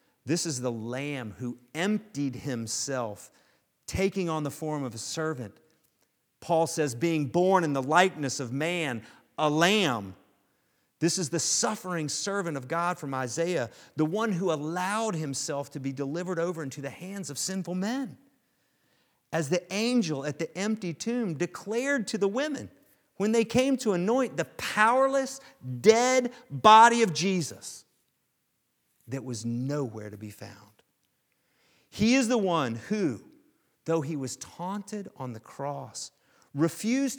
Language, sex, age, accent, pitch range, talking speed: English, male, 40-59, American, 140-215 Hz, 145 wpm